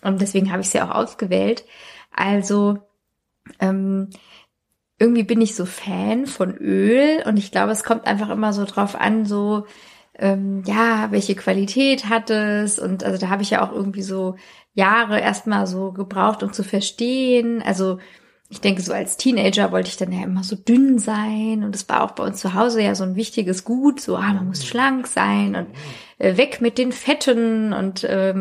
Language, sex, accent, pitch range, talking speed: German, female, German, 190-220 Hz, 190 wpm